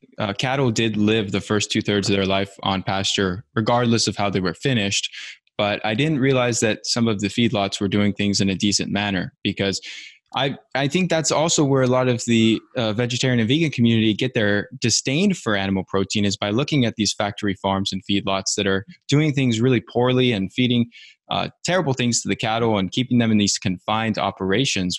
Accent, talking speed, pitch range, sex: American, 205 wpm, 100-130 Hz, male